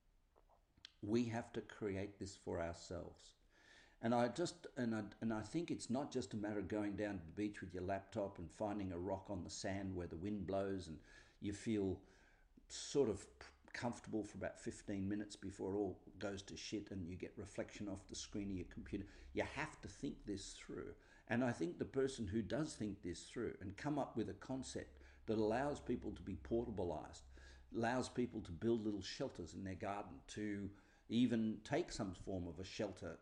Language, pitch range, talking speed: English, 95-115 Hz, 200 wpm